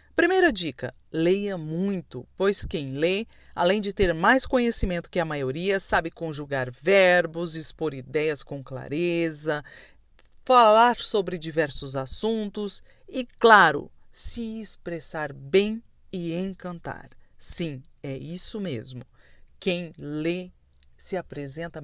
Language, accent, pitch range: Portuguese, Brazilian, 150-215 Hz